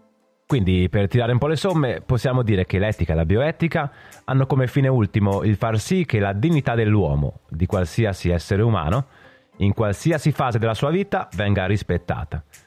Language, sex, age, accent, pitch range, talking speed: Italian, male, 30-49, native, 100-150 Hz, 175 wpm